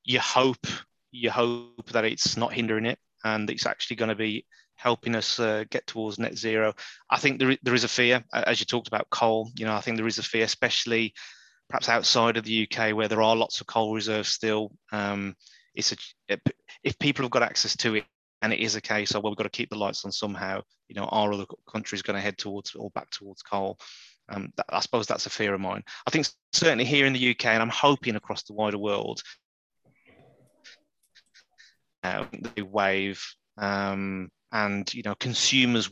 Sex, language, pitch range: male, English, 105-115 Hz